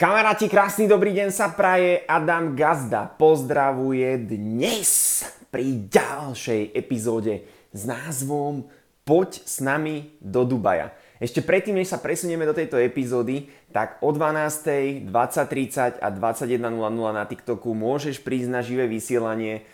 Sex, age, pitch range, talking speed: male, 20-39, 115-145 Hz, 120 wpm